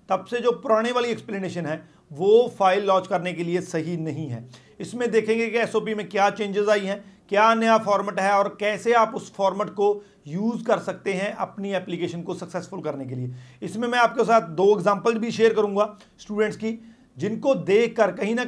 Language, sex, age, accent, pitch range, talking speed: Hindi, male, 40-59, native, 180-220 Hz, 200 wpm